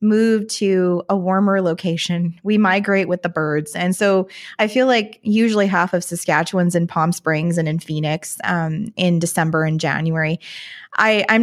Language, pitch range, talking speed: English, 165-200 Hz, 165 wpm